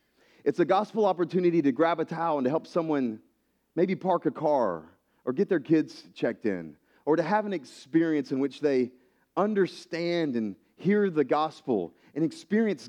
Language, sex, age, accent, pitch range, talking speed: English, male, 30-49, American, 100-145 Hz, 170 wpm